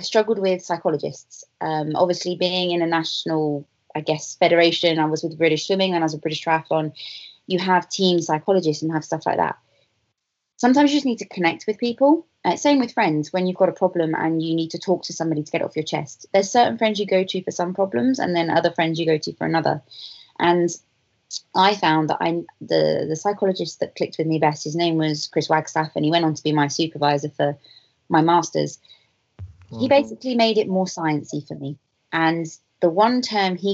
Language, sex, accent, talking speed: English, female, British, 215 wpm